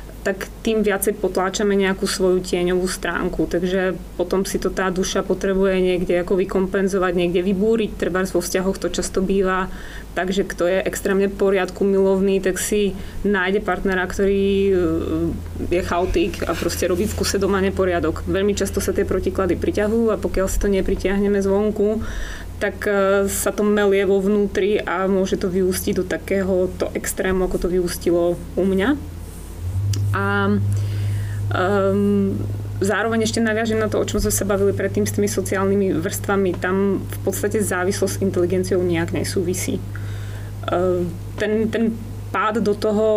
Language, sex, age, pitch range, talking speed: English, female, 20-39, 155-195 Hz, 150 wpm